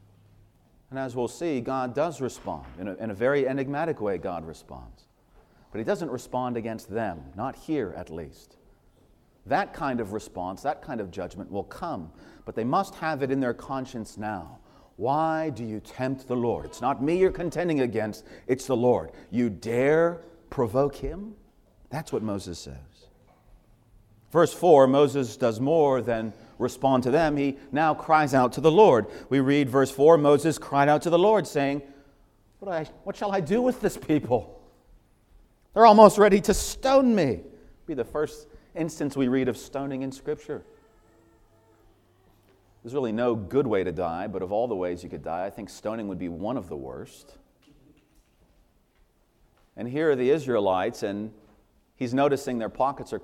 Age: 40-59